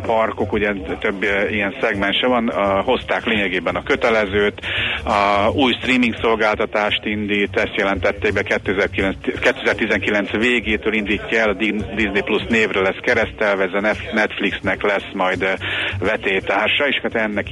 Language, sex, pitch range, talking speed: Hungarian, male, 100-115 Hz, 135 wpm